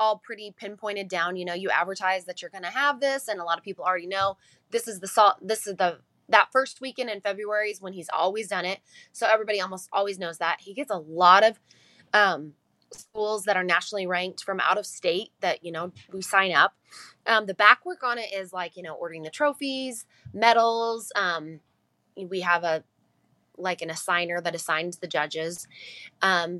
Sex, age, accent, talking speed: female, 20-39, American, 210 wpm